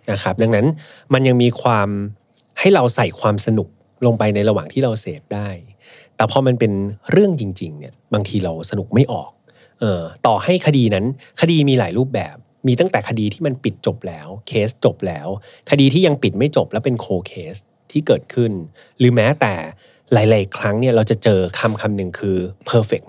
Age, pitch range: 30-49, 100-135 Hz